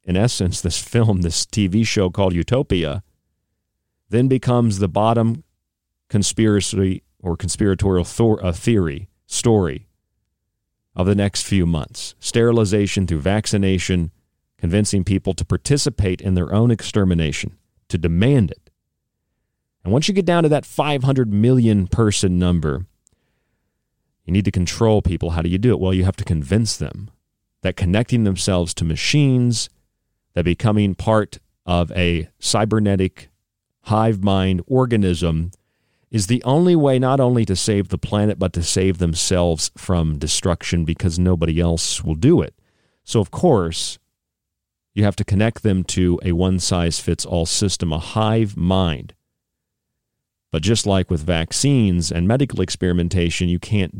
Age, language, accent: 40-59, English, American